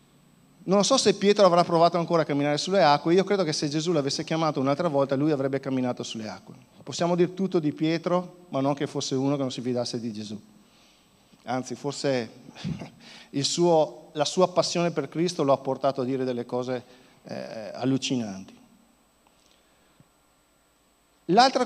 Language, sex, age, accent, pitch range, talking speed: Italian, male, 50-69, native, 130-175 Hz, 165 wpm